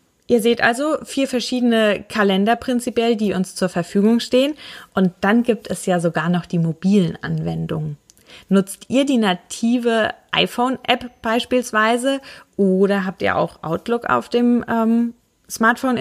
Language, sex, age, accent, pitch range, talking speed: German, female, 20-39, German, 190-235 Hz, 140 wpm